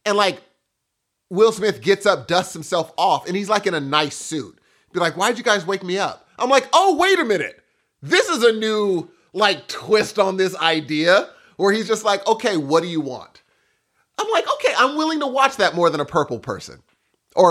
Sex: male